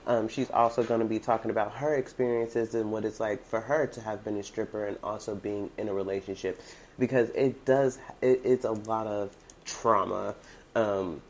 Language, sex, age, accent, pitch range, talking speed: English, male, 30-49, American, 100-120 Hz, 190 wpm